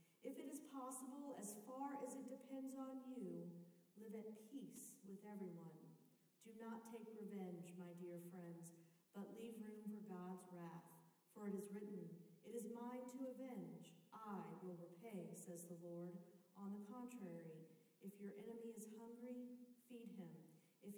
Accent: American